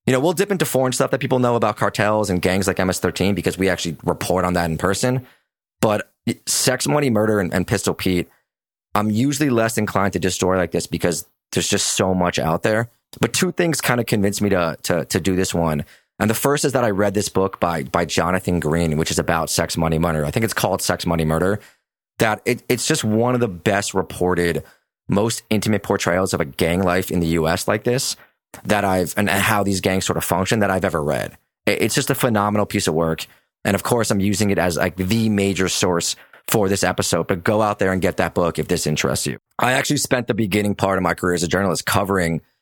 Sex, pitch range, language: male, 90-110 Hz, English